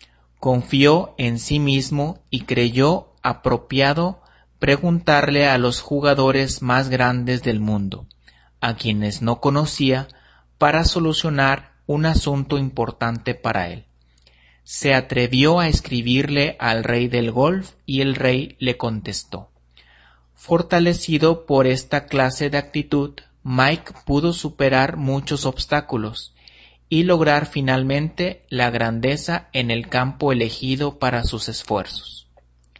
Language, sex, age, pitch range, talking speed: Spanish, male, 40-59, 115-145 Hz, 115 wpm